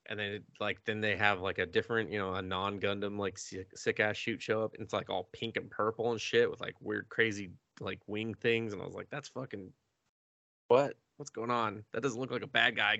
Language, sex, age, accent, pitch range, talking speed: English, male, 20-39, American, 95-115 Hz, 235 wpm